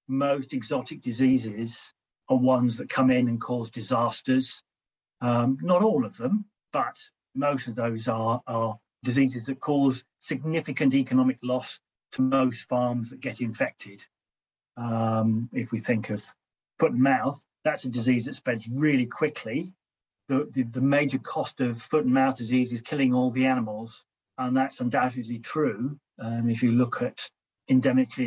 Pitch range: 120-135 Hz